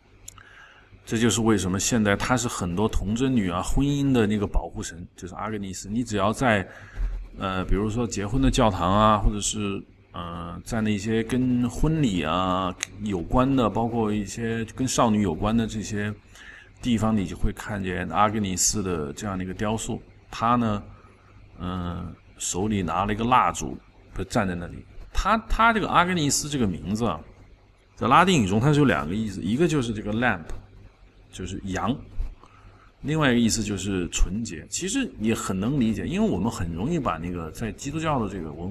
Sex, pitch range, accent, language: male, 95-120 Hz, native, Chinese